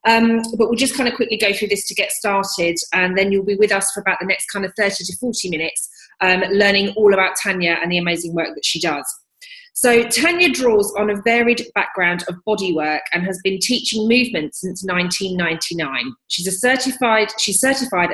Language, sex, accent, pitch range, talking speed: English, female, British, 175-220 Hz, 200 wpm